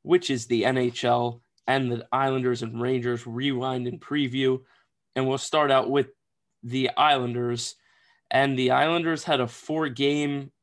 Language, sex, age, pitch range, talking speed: English, male, 20-39, 120-135 Hz, 145 wpm